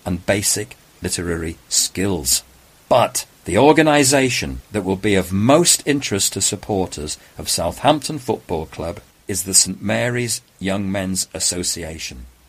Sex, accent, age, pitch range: male, British, 50-69, 85-125 Hz